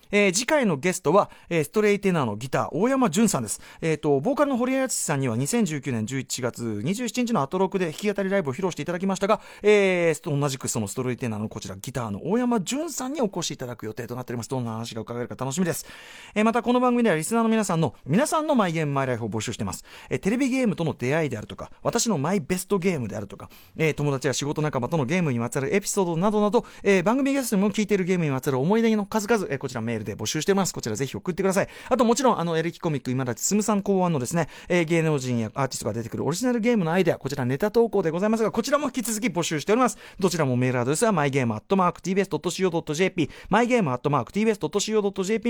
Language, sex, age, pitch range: Japanese, male, 40-59, 140-220 Hz